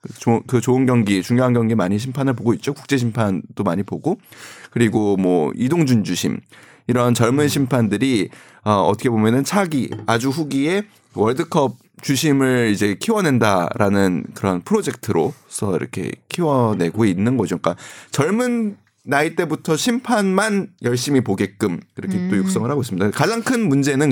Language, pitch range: Korean, 110-155 Hz